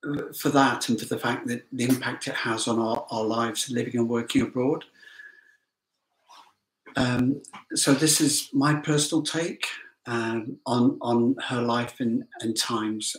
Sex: male